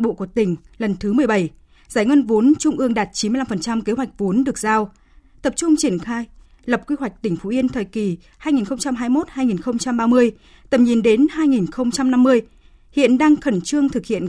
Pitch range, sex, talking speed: 205-270 Hz, female, 170 wpm